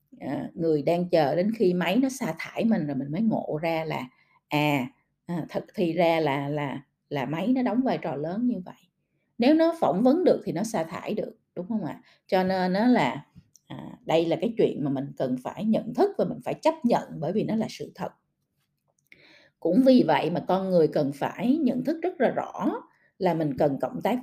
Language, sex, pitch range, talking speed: Vietnamese, female, 155-245 Hz, 220 wpm